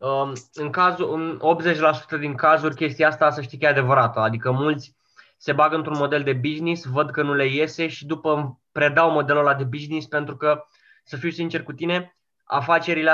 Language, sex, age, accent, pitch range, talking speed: Romanian, male, 20-39, native, 135-160 Hz, 185 wpm